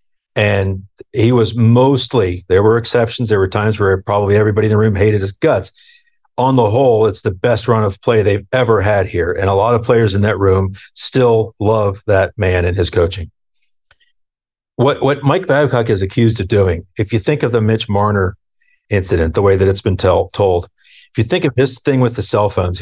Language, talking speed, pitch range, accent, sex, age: English, 210 wpm, 100-125 Hz, American, male, 50-69